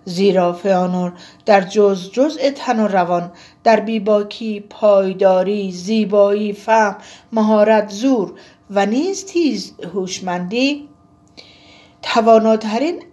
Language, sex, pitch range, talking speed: Persian, female, 180-230 Hz, 90 wpm